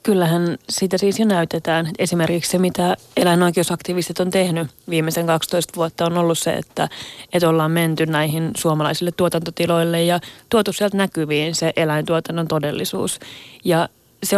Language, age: Finnish, 30-49